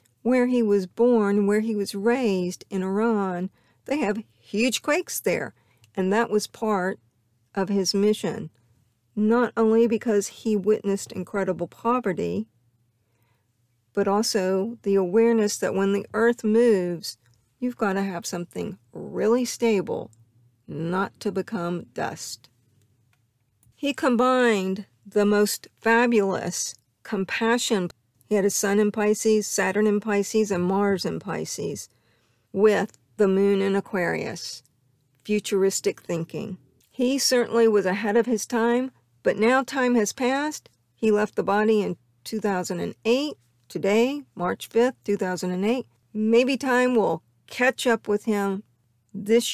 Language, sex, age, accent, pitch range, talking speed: English, female, 50-69, American, 170-225 Hz, 125 wpm